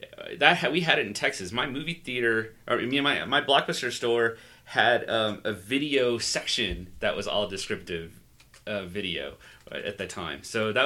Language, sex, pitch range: English, male, 100-120 Hz